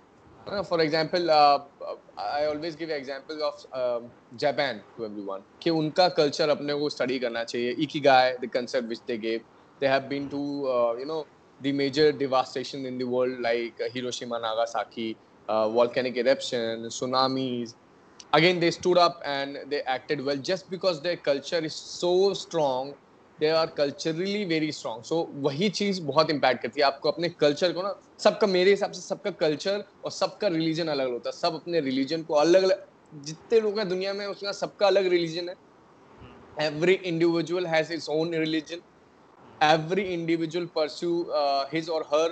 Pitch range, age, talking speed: 135-175 Hz, 20-39, 145 wpm